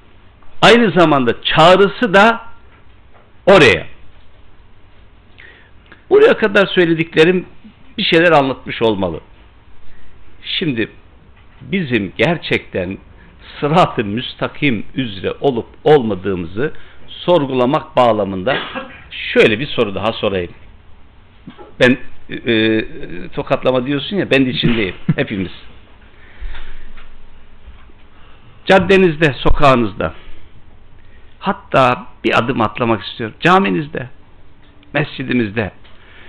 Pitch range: 95-135 Hz